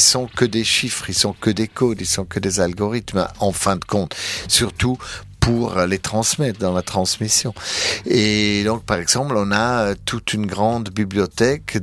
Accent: French